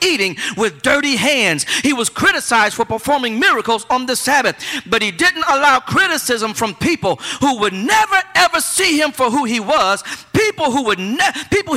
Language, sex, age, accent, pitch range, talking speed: English, male, 50-69, American, 225-295 Hz, 180 wpm